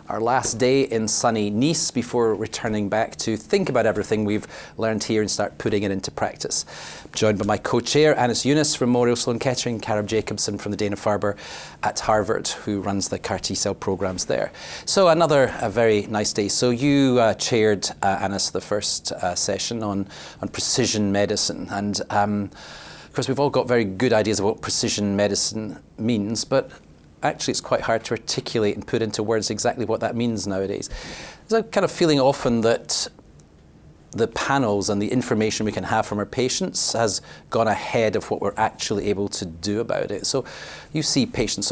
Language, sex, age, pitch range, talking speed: English, male, 40-59, 100-120 Hz, 195 wpm